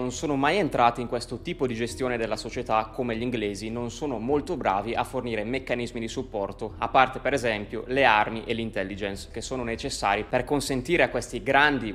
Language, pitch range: Italian, 115-135 Hz